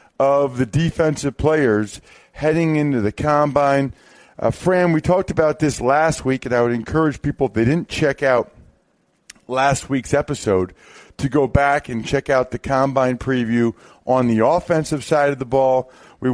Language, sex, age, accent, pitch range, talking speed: English, male, 50-69, American, 130-165 Hz, 170 wpm